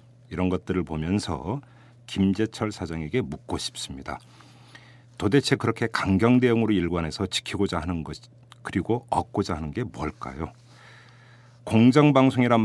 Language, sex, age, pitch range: Korean, male, 40-59, 85-120 Hz